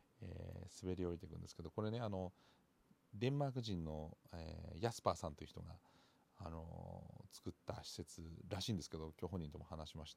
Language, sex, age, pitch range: Japanese, male, 40-59, 85-110 Hz